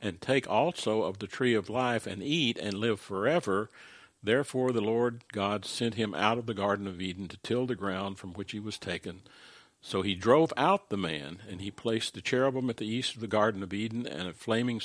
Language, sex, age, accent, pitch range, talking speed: English, male, 60-79, American, 100-120 Hz, 225 wpm